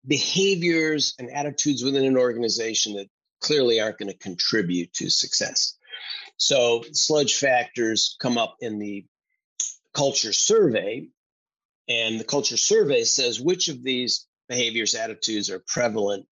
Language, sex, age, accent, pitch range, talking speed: English, male, 40-59, American, 115-155 Hz, 130 wpm